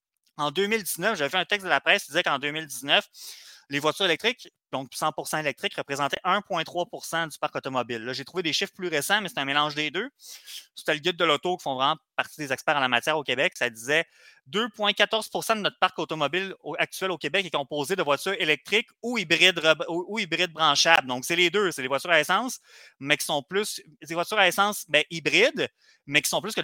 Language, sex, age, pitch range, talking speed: French, male, 30-49, 155-205 Hz, 225 wpm